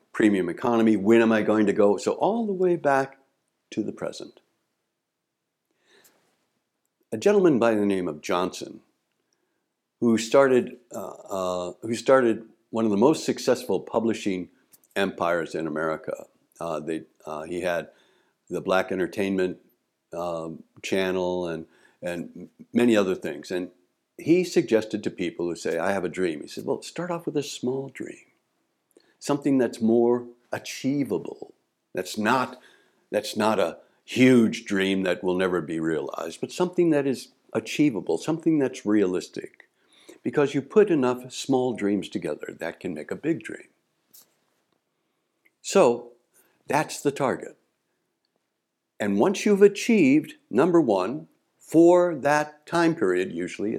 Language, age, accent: English, 60-79, American